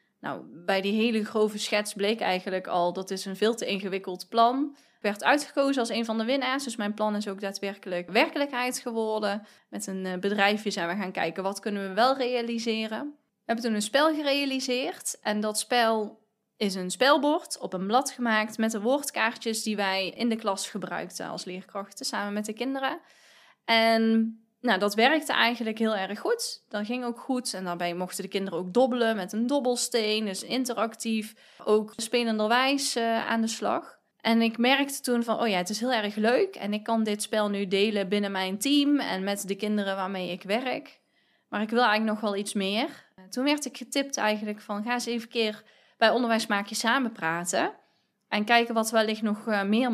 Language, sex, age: Dutch, female, 20-39